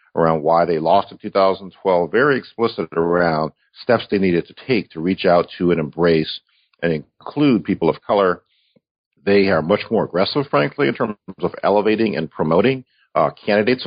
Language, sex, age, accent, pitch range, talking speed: English, male, 50-69, American, 80-100 Hz, 170 wpm